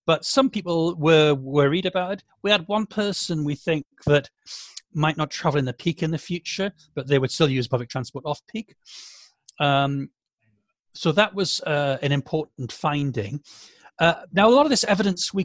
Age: 40-59